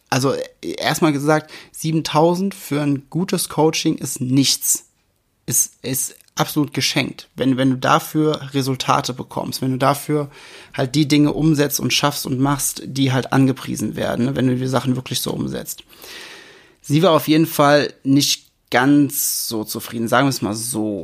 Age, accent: 30-49, German